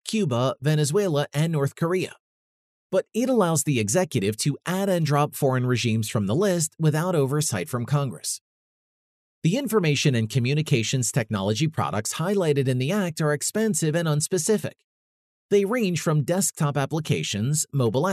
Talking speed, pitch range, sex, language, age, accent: 140 wpm, 125-165 Hz, male, English, 30-49, American